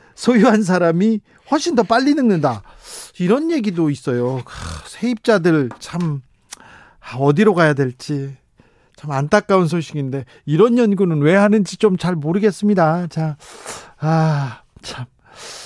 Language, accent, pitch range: Korean, native, 145-195 Hz